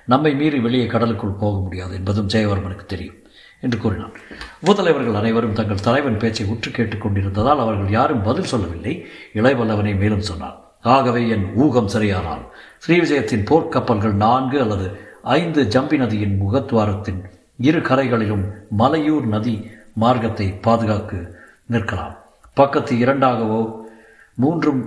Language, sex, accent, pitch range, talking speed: Tamil, male, native, 105-125 Hz, 110 wpm